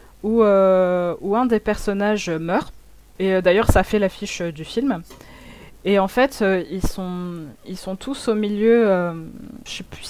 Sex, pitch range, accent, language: female, 190-245 Hz, French, French